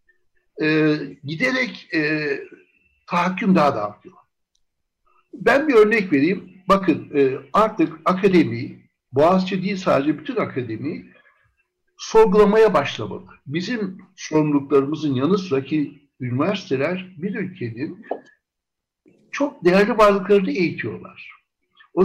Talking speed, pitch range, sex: 95 wpm, 155-210 Hz, male